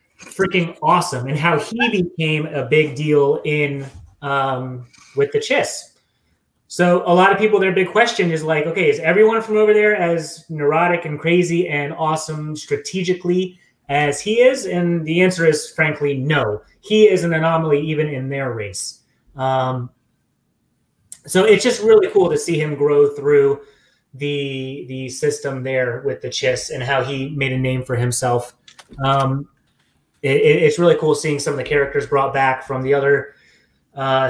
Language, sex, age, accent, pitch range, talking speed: English, male, 30-49, American, 130-170 Hz, 165 wpm